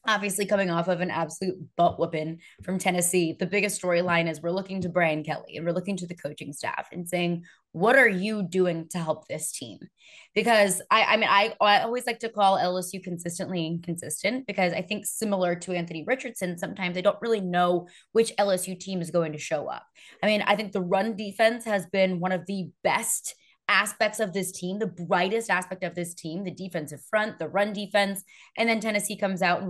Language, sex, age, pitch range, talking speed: English, female, 20-39, 170-205 Hz, 210 wpm